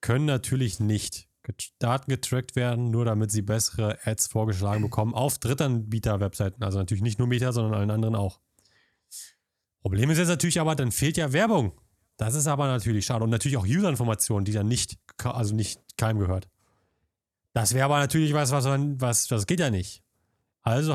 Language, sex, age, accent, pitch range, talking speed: German, male, 30-49, German, 110-135 Hz, 180 wpm